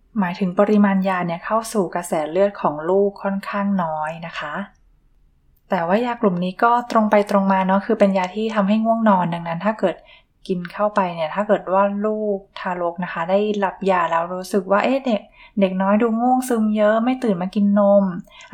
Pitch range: 180-205 Hz